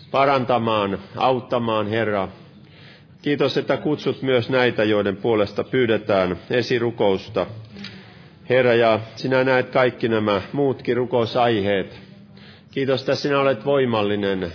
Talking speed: 105 wpm